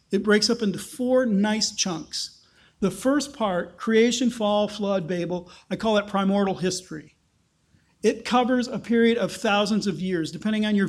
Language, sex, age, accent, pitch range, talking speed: English, male, 40-59, American, 180-230 Hz, 165 wpm